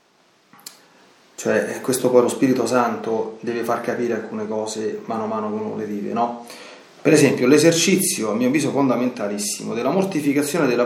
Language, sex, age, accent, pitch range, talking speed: Italian, male, 30-49, native, 120-165 Hz, 155 wpm